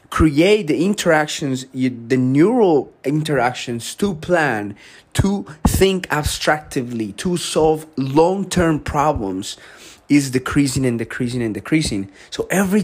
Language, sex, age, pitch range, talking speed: English, male, 30-49, 115-150 Hz, 105 wpm